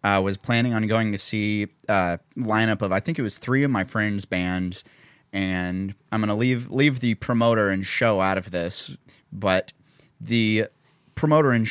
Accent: American